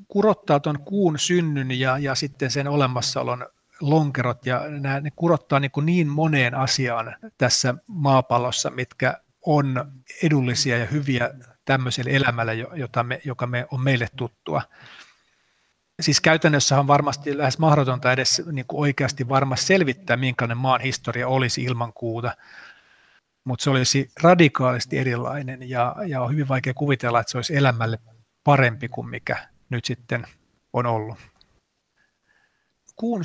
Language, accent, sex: Finnish, native, male